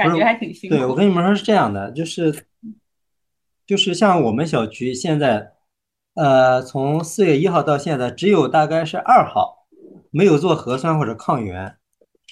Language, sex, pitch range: Chinese, male, 135-190 Hz